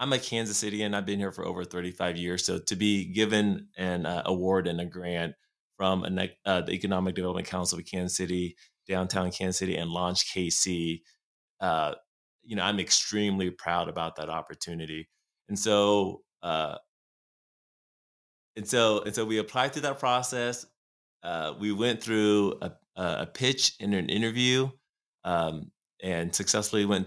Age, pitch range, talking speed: 20-39, 95-110 Hz, 165 wpm